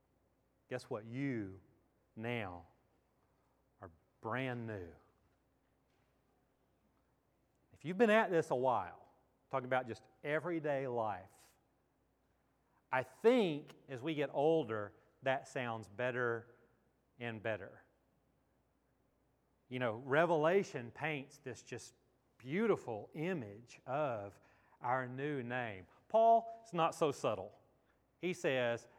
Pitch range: 115-160 Hz